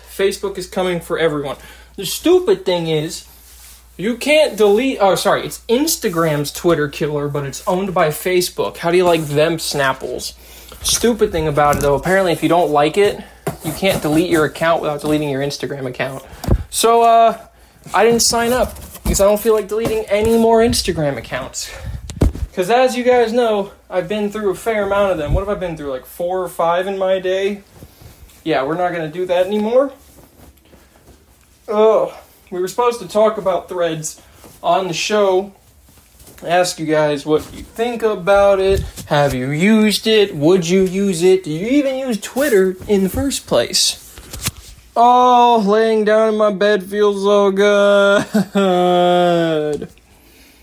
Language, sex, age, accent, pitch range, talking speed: English, male, 20-39, American, 155-210 Hz, 170 wpm